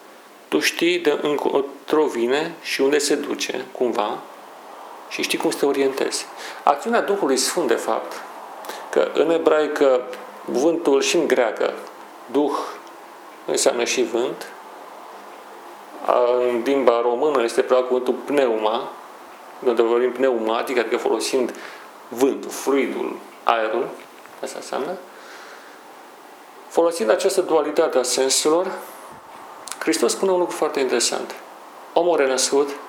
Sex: male